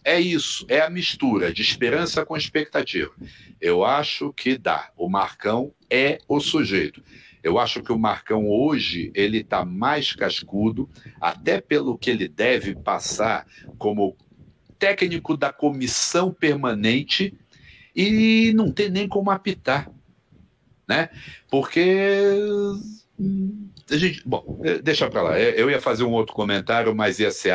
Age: 60-79